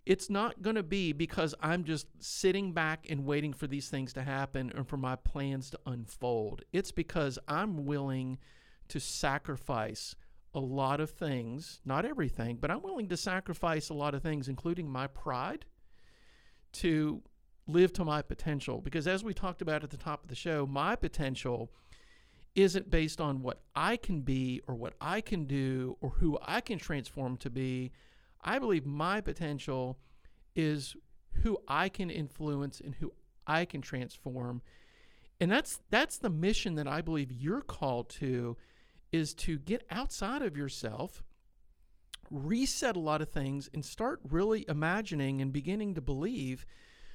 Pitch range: 135-175 Hz